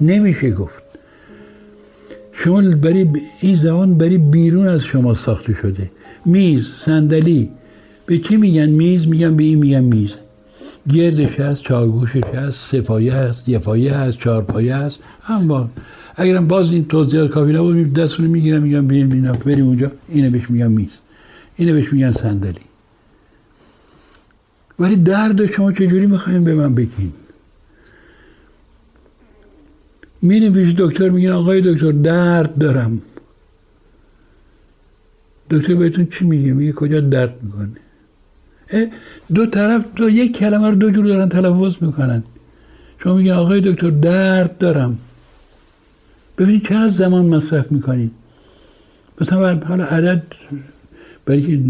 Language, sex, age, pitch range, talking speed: Persian, male, 60-79, 120-180 Hz, 125 wpm